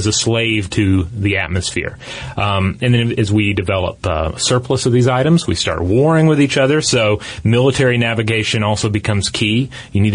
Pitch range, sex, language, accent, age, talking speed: 95-115 Hz, male, English, American, 30-49, 190 wpm